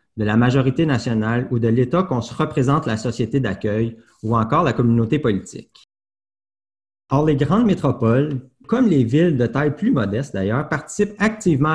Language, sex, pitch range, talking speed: French, male, 115-155 Hz, 165 wpm